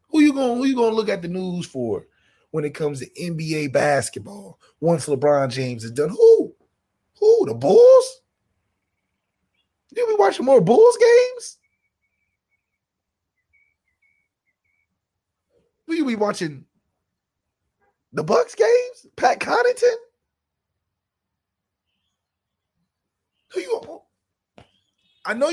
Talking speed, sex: 105 wpm, male